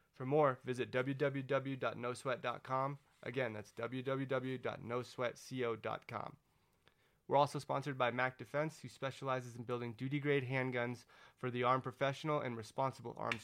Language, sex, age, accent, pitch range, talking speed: English, male, 30-49, American, 120-135 Hz, 115 wpm